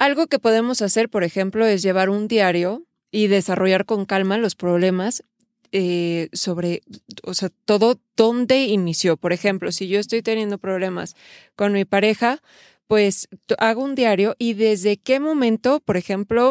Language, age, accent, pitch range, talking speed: Spanish, 20-39, Mexican, 190-230 Hz, 155 wpm